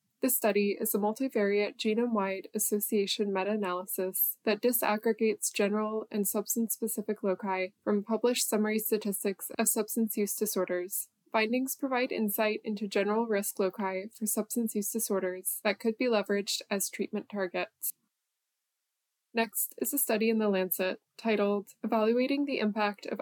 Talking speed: 135 wpm